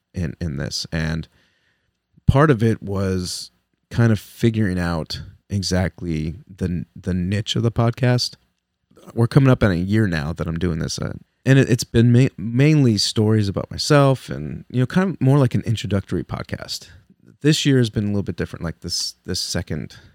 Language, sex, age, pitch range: English, male, 30-49, 85-110 Hz